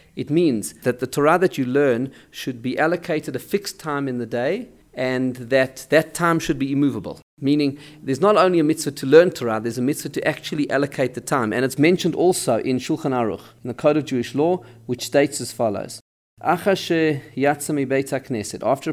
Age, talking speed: 40-59, 185 wpm